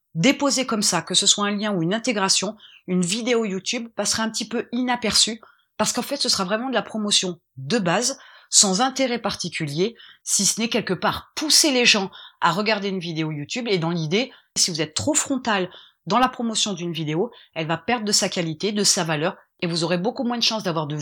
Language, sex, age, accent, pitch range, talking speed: French, female, 30-49, French, 175-235 Hz, 220 wpm